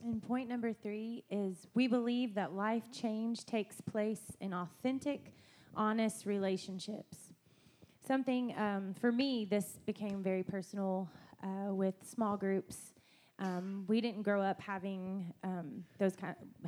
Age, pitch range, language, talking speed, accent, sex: 20-39, 190-220 Hz, English, 135 wpm, American, female